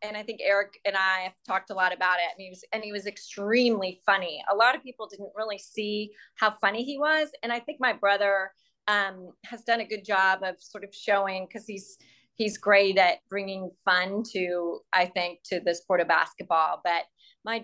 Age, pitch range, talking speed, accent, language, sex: 30-49, 185-230 Hz, 215 wpm, American, English, female